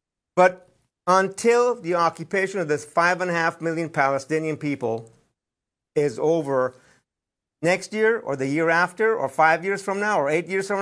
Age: 50-69